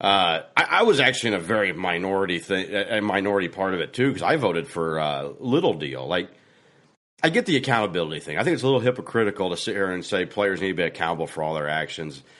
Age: 40-59